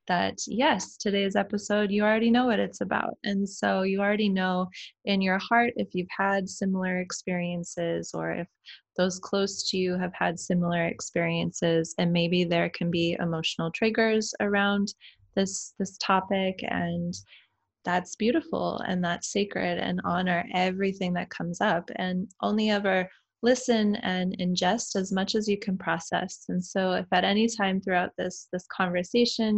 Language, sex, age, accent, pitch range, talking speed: English, female, 20-39, American, 175-205 Hz, 160 wpm